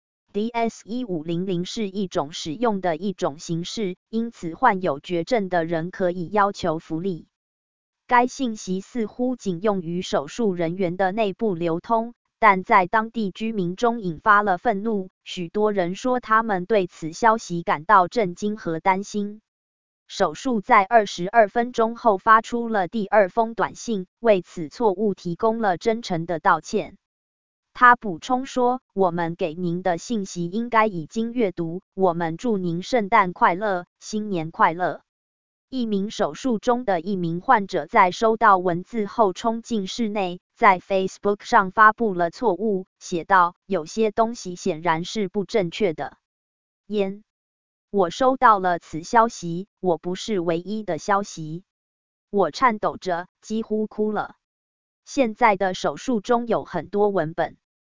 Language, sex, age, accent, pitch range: English, female, 20-39, American, 175-225 Hz